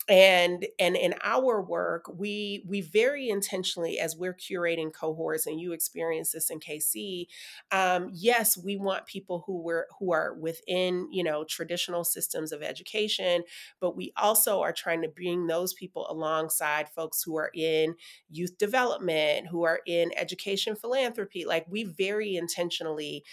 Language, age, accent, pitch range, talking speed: English, 30-49, American, 165-200 Hz, 155 wpm